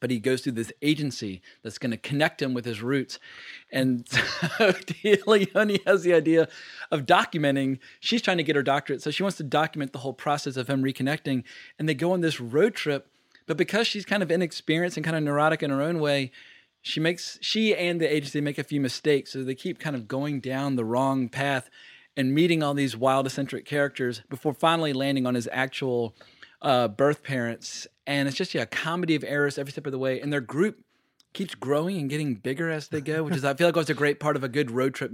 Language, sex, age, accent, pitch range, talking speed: English, male, 30-49, American, 130-160 Hz, 225 wpm